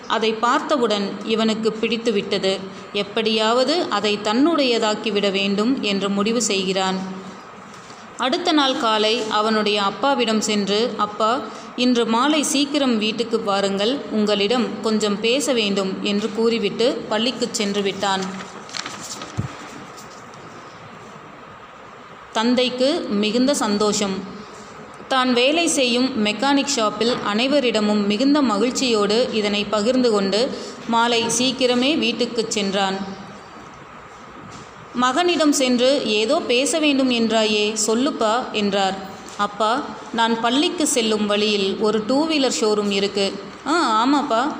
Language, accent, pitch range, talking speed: Tamil, native, 210-255 Hz, 95 wpm